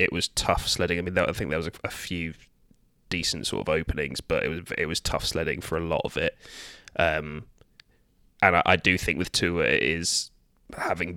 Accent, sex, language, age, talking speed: British, male, English, 20-39, 210 wpm